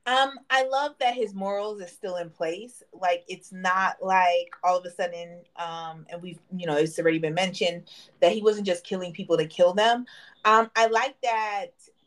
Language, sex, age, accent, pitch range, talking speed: English, female, 30-49, American, 175-220 Hz, 200 wpm